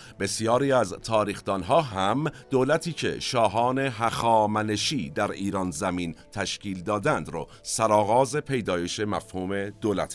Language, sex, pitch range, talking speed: Persian, male, 95-120 Hz, 105 wpm